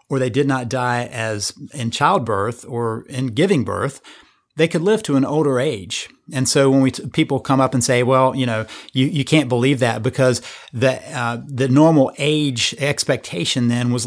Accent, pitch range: American, 120-140 Hz